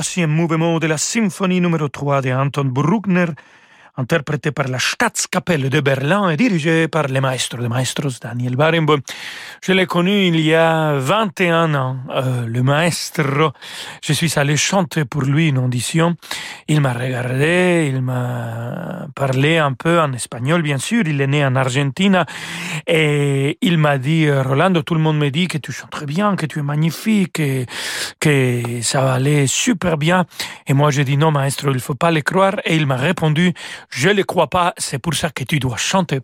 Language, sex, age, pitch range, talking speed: French, male, 40-59, 140-170 Hz, 195 wpm